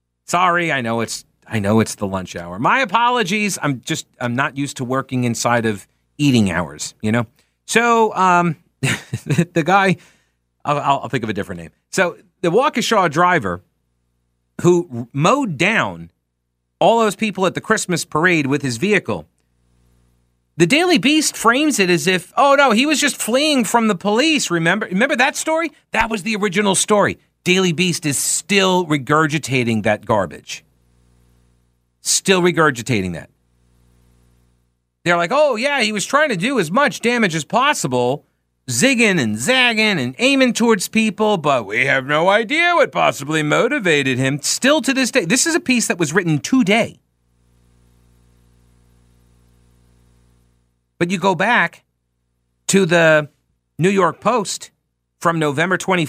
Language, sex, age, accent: English, male, 40-59, American